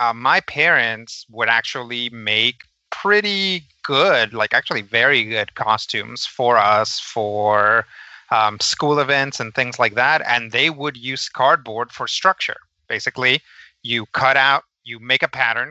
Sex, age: male, 30-49